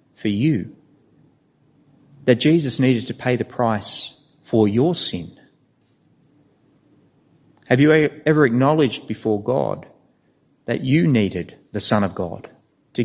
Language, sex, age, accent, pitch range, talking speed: English, male, 30-49, Australian, 110-145 Hz, 120 wpm